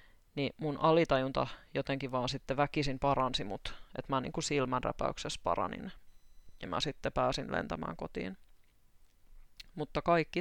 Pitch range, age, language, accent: 130-160 Hz, 20-39, Finnish, native